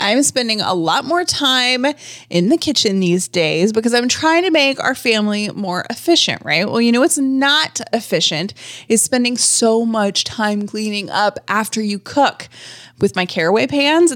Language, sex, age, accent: English, female, 20-39, American